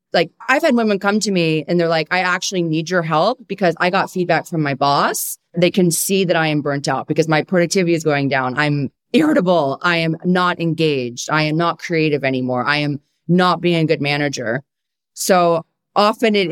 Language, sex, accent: English, female, American